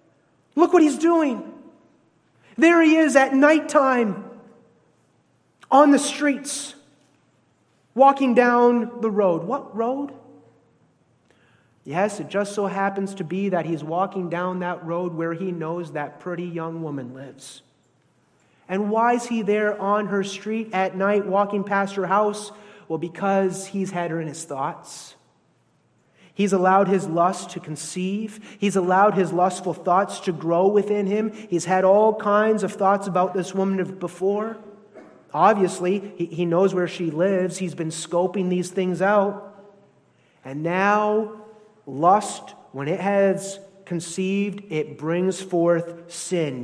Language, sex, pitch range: English, male, 170-210 Hz